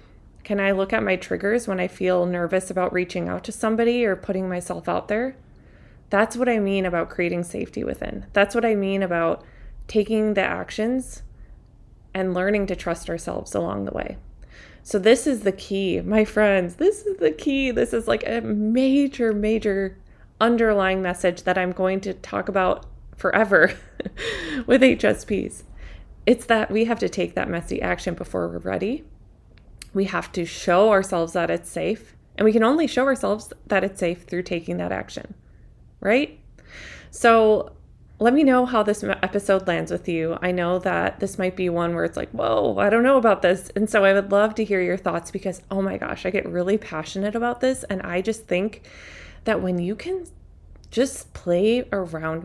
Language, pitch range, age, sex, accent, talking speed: English, 180-225 Hz, 20-39, female, American, 185 wpm